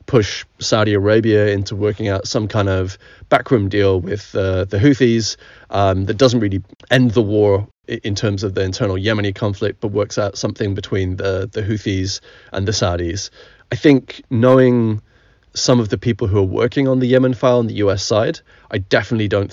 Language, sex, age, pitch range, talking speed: English, male, 30-49, 100-120 Hz, 185 wpm